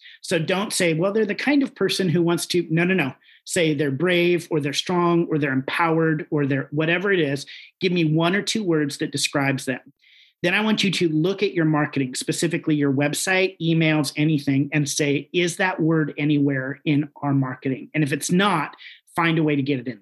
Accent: American